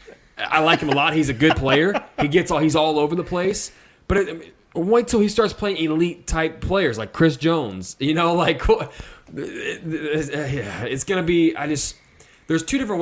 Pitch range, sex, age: 115-150 Hz, male, 20-39